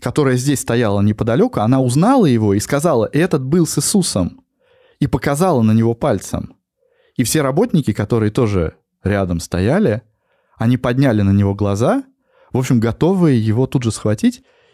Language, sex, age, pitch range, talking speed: Russian, male, 20-39, 105-155 Hz, 150 wpm